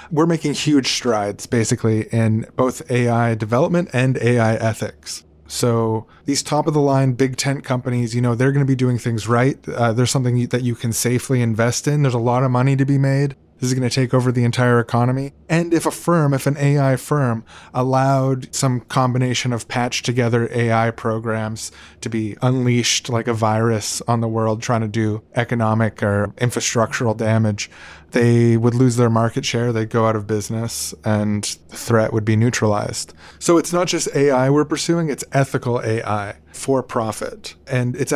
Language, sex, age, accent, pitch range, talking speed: English, male, 20-39, American, 110-135 Hz, 185 wpm